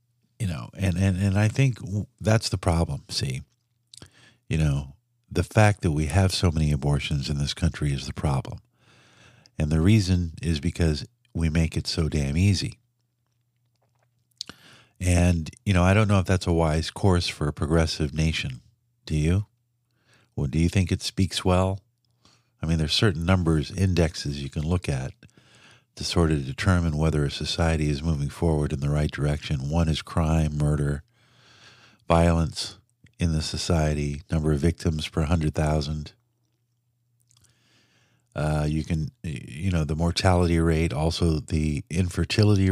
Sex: male